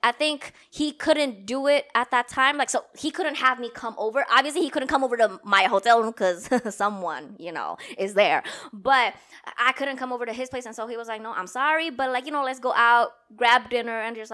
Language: English